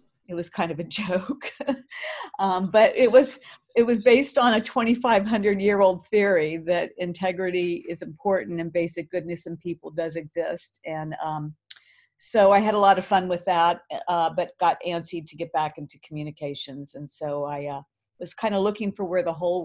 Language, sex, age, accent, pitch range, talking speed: English, female, 50-69, American, 160-185 Hz, 190 wpm